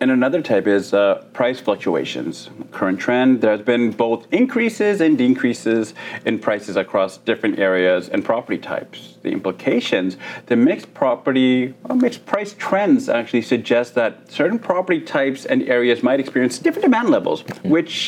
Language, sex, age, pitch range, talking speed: English, male, 40-59, 110-180 Hz, 150 wpm